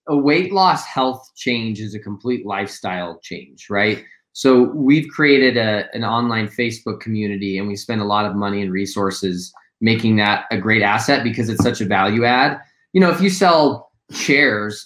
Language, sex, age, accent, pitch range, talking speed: English, male, 20-39, American, 105-130 Hz, 180 wpm